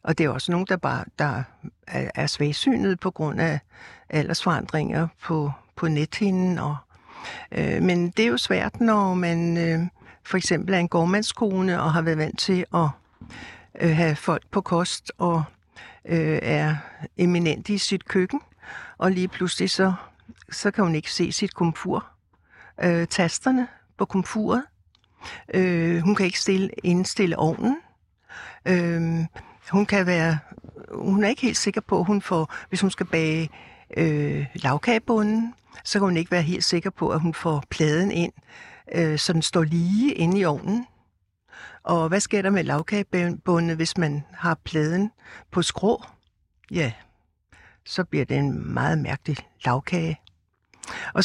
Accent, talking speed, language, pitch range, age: native, 155 wpm, Danish, 155-195 Hz, 60-79